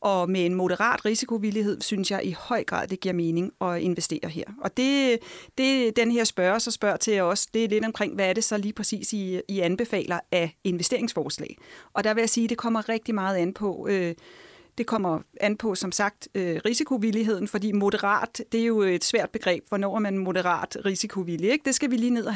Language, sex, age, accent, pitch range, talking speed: Danish, female, 30-49, native, 200-250 Hz, 220 wpm